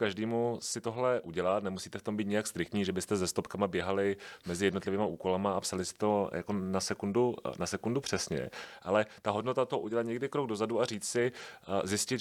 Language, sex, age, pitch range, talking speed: Czech, male, 30-49, 95-115 Hz, 195 wpm